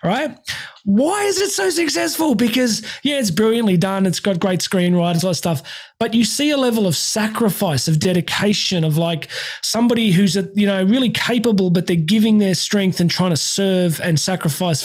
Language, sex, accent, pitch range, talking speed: English, male, Australian, 175-220 Hz, 190 wpm